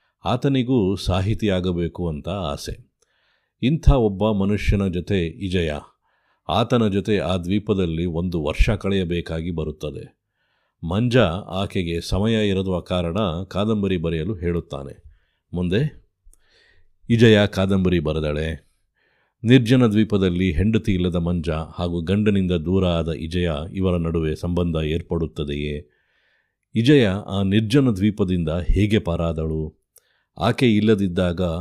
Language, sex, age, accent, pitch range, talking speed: Kannada, male, 50-69, native, 85-105 Hz, 95 wpm